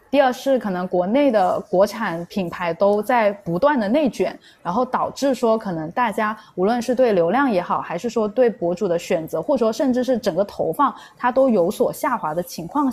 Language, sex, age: Chinese, female, 20-39